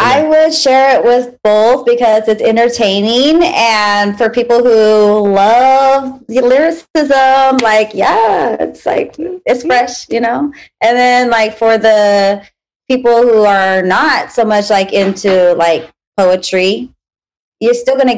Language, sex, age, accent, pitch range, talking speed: English, female, 30-49, American, 195-235 Hz, 140 wpm